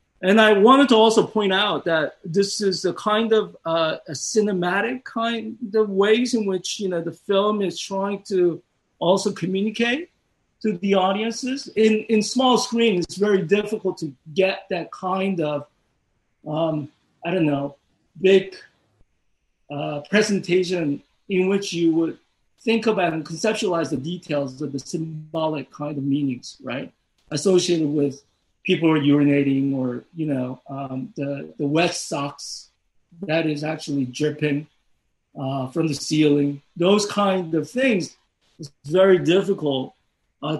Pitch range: 150-200 Hz